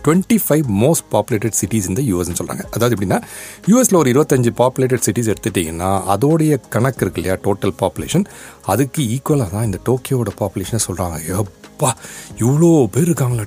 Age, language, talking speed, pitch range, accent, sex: 40-59, Tamil, 145 wpm, 100-150 Hz, native, male